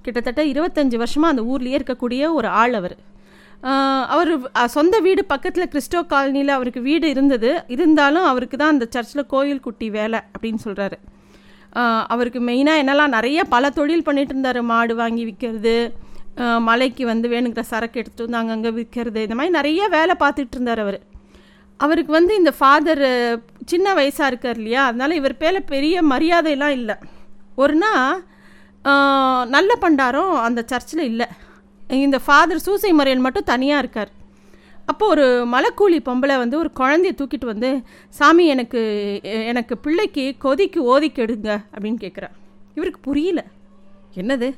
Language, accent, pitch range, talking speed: Tamil, native, 230-300 Hz, 130 wpm